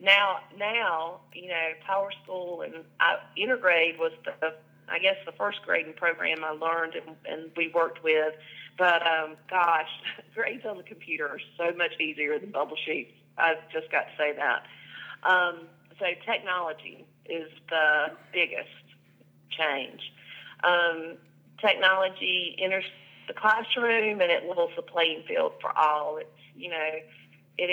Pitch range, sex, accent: 160-195 Hz, female, American